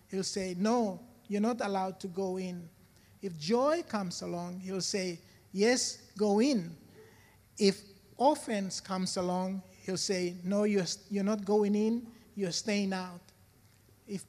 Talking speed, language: 145 wpm, English